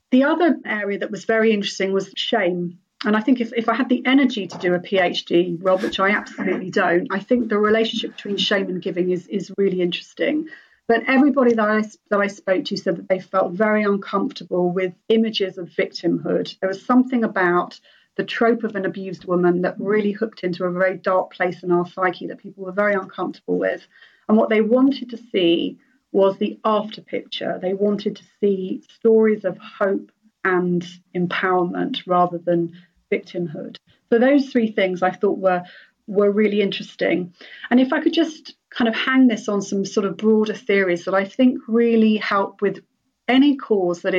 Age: 40-59